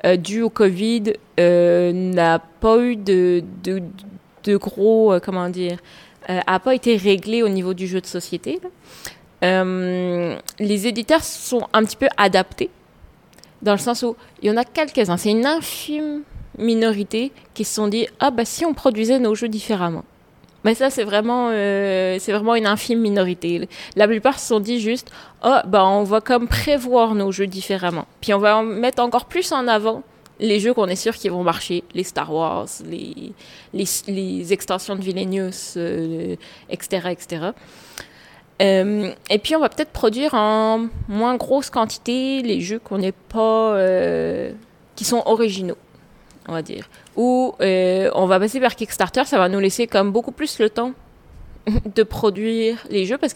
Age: 20-39